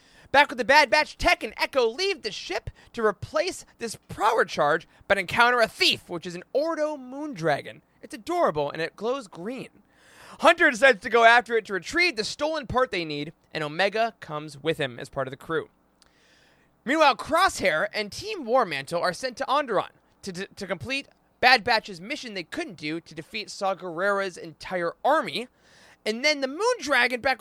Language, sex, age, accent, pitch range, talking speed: English, male, 20-39, American, 170-275 Hz, 180 wpm